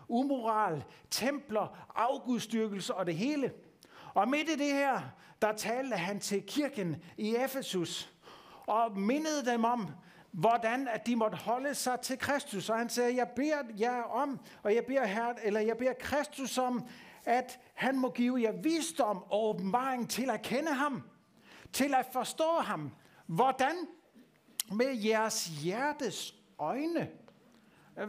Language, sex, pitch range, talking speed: English, male, 210-265 Hz, 145 wpm